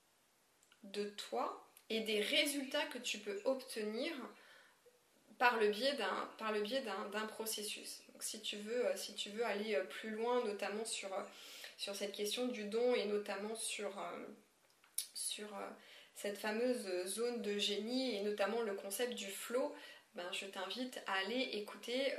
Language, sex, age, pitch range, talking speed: French, female, 20-39, 210-275 Hz, 155 wpm